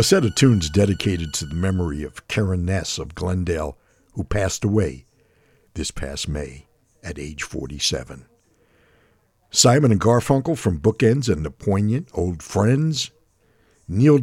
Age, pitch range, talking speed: 60-79, 85-115 Hz, 140 wpm